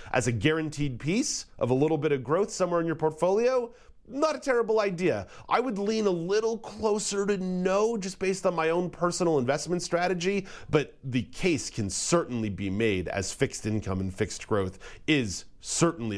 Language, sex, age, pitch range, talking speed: English, male, 30-49, 105-160 Hz, 180 wpm